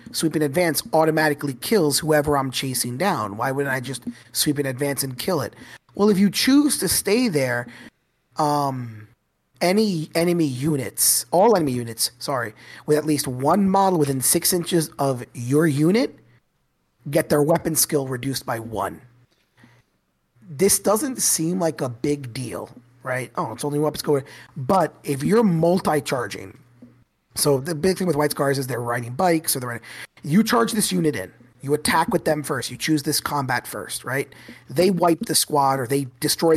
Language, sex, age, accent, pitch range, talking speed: English, male, 30-49, American, 125-160 Hz, 175 wpm